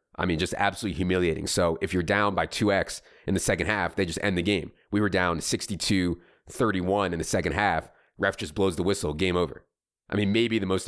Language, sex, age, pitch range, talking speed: English, male, 30-49, 85-100 Hz, 220 wpm